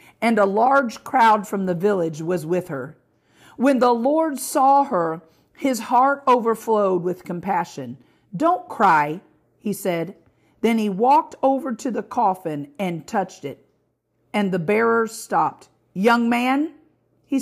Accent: American